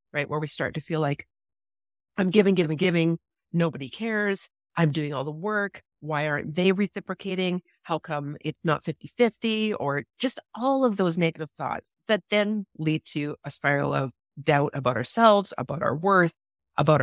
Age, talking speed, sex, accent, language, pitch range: 30-49, 170 wpm, female, American, English, 150-195 Hz